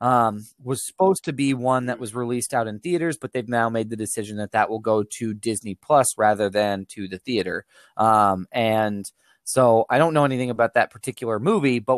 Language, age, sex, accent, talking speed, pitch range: English, 20-39, male, American, 210 wpm, 110-130 Hz